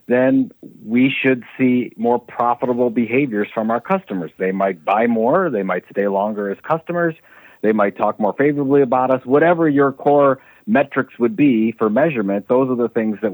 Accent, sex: American, male